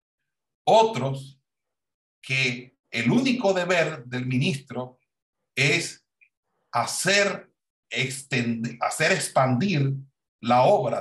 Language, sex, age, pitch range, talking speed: Spanish, male, 60-79, 135-200 Hz, 75 wpm